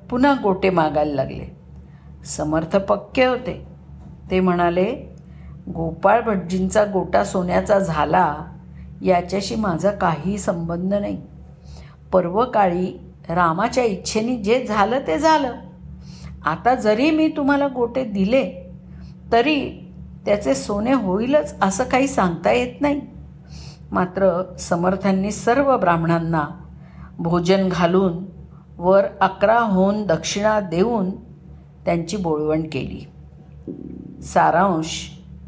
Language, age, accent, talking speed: Marathi, 50-69, native, 95 wpm